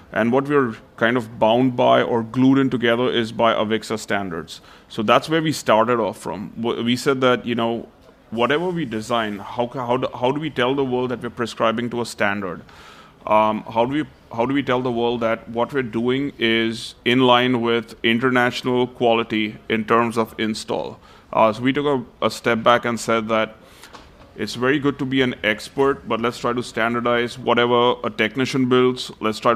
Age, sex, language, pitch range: 30-49, male, English, 115-125 Hz